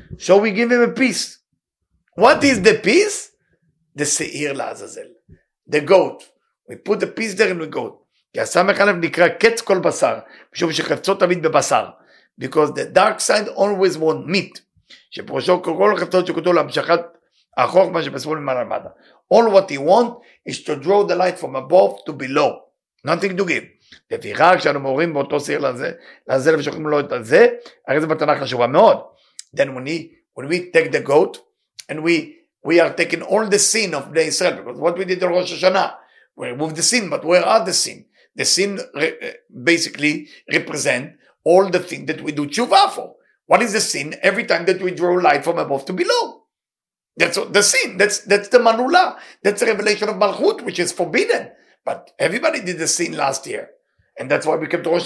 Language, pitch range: English, 160-215 Hz